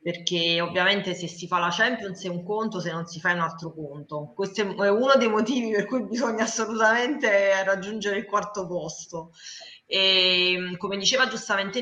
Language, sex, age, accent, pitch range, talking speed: Italian, female, 20-39, native, 170-200 Hz, 180 wpm